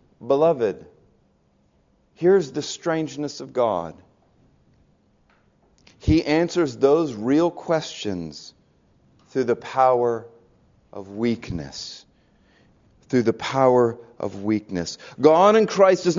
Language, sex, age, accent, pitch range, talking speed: English, male, 40-59, American, 145-185 Hz, 95 wpm